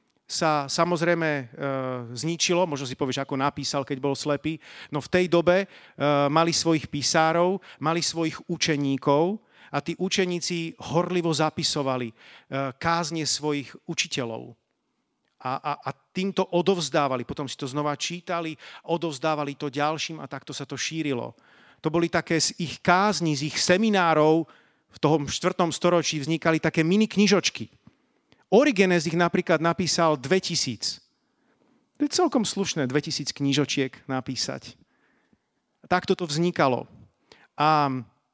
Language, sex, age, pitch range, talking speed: Slovak, male, 40-59, 145-175 Hz, 125 wpm